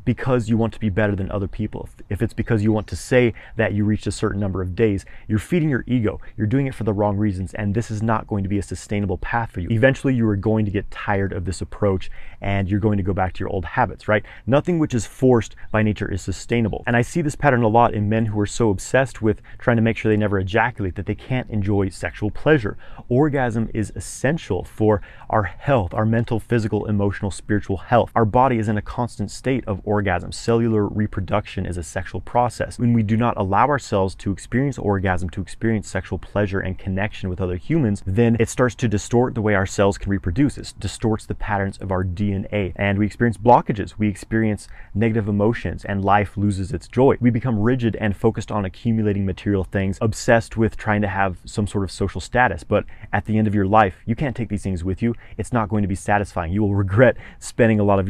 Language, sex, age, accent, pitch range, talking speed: English, male, 30-49, American, 100-115 Hz, 235 wpm